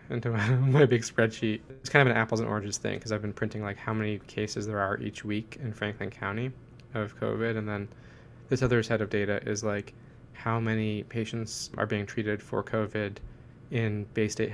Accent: American